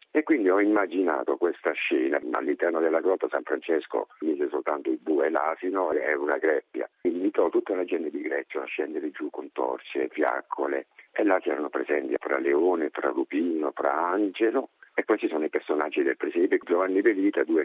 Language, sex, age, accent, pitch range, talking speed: Italian, male, 50-69, native, 345-410 Hz, 180 wpm